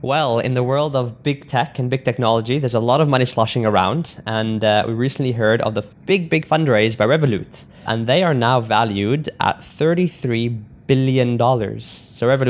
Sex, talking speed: male, 185 wpm